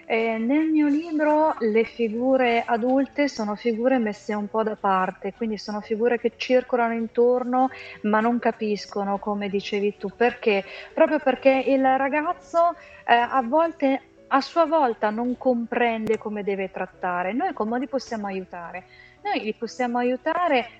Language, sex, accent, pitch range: Italian, female, native, 195-265 Hz